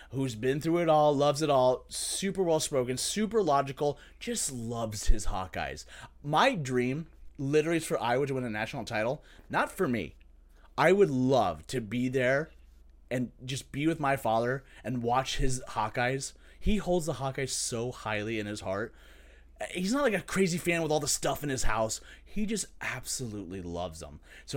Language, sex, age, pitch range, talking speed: English, male, 30-49, 115-165 Hz, 180 wpm